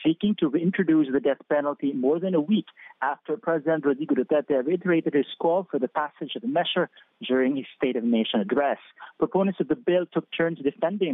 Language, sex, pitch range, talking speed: English, male, 145-175 Hz, 195 wpm